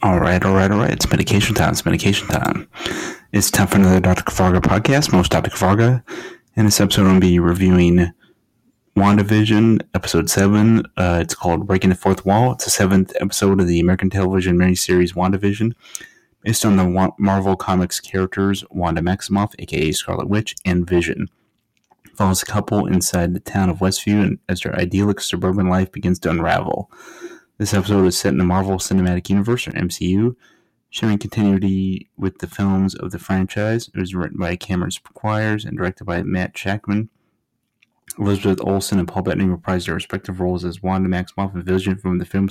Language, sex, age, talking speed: English, male, 30-49, 180 wpm